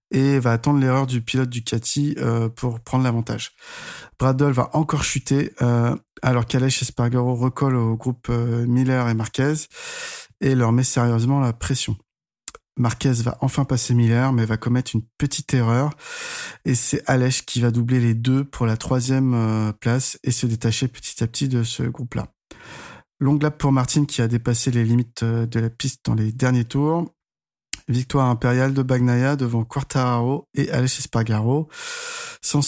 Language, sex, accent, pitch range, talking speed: French, male, French, 120-140 Hz, 170 wpm